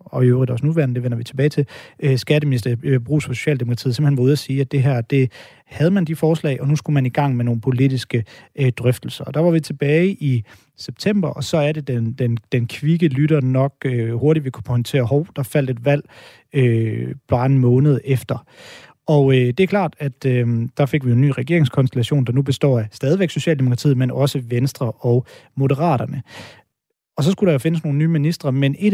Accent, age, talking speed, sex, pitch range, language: native, 30-49, 210 wpm, male, 125-155 Hz, Danish